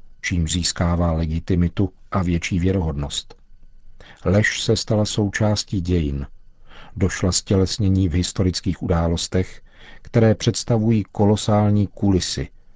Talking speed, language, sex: 100 wpm, Czech, male